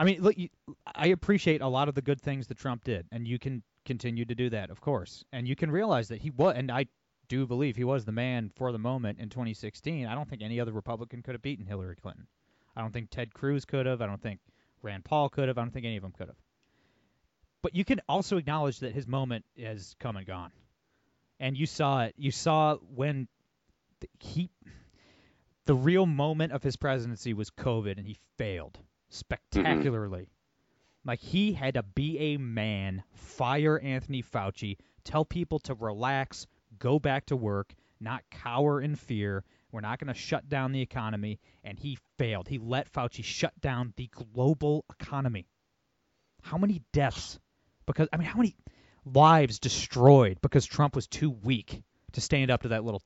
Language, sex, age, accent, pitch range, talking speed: English, male, 30-49, American, 110-145 Hz, 190 wpm